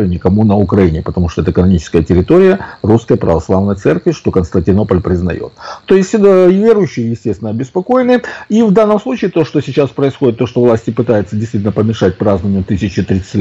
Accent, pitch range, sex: native, 100-160 Hz, male